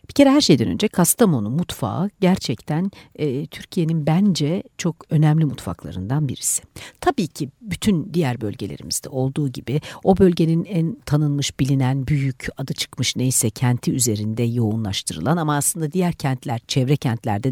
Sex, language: female, Turkish